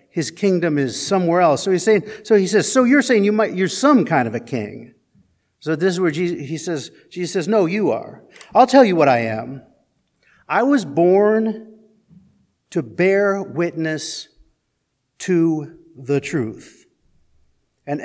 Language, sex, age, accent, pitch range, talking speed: English, male, 50-69, American, 140-200 Hz, 165 wpm